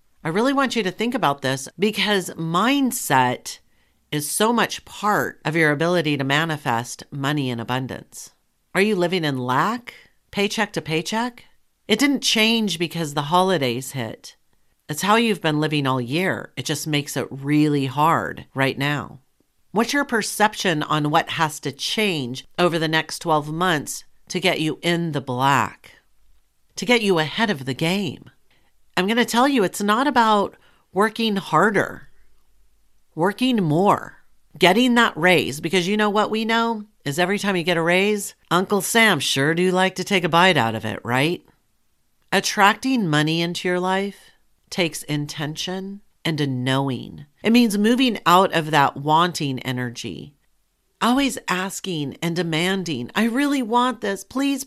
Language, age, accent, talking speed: English, 50-69, American, 160 wpm